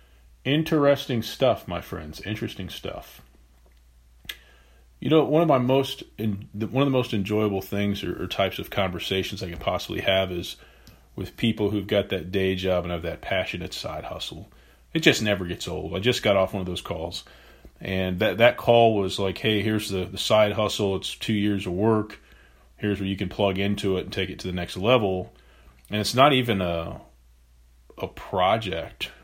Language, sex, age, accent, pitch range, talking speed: English, male, 40-59, American, 90-110 Hz, 190 wpm